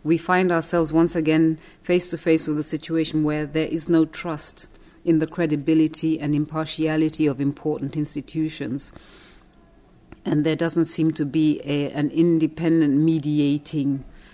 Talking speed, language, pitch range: 145 wpm, English, 145-160 Hz